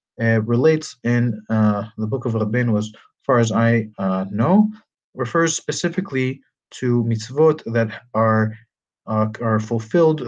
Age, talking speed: 30-49, 135 wpm